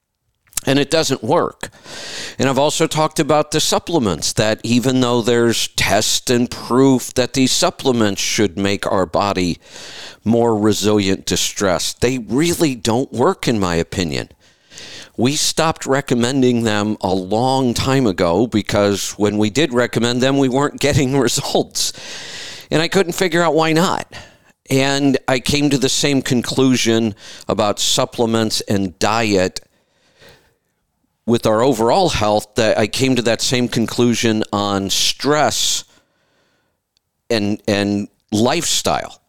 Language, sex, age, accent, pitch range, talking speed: English, male, 50-69, American, 105-135 Hz, 135 wpm